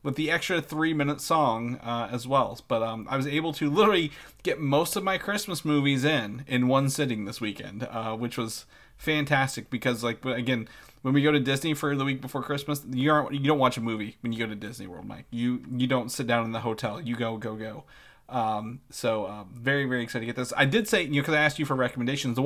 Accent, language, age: American, English, 30-49